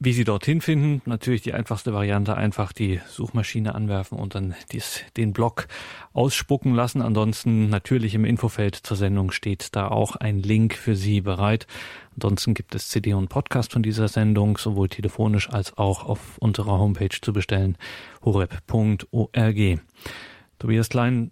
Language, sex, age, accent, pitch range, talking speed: German, male, 30-49, German, 105-125 Hz, 150 wpm